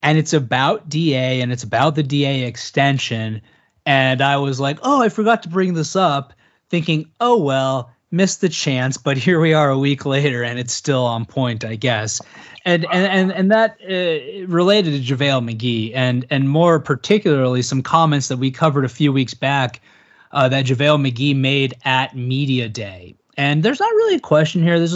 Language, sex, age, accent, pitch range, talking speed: English, male, 30-49, American, 125-165 Hz, 190 wpm